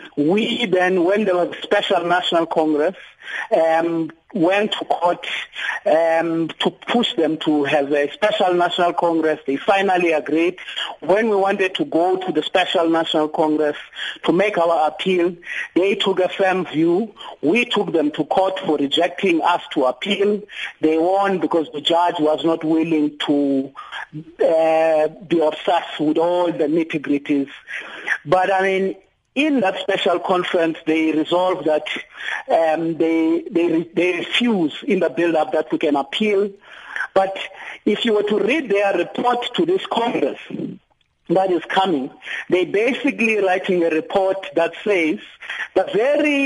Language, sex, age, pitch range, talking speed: English, male, 50-69, 160-195 Hz, 150 wpm